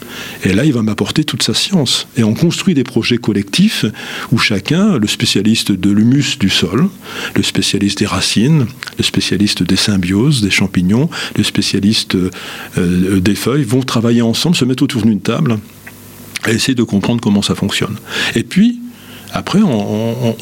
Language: French